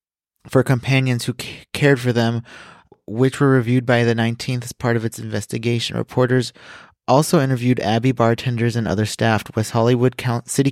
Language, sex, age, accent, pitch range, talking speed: English, male, 20-39, American, 110-130 Hz, 155 wpm